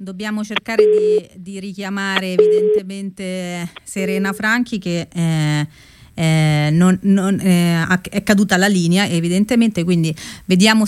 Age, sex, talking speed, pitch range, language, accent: 30-49, female, 105 wpm, 160-195 Hz, Italian, native